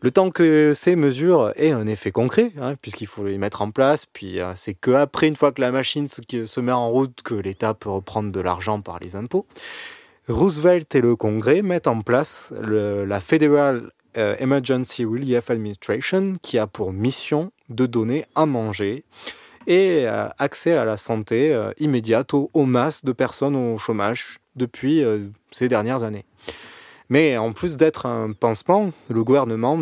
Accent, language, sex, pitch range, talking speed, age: French, French, male, 110-150 Hz, 165 wpm, 20-39